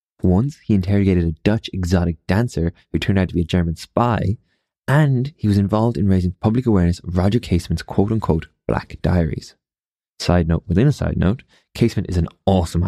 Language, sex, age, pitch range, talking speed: English, male, 20-39, 85-110 Hz, 180 wpm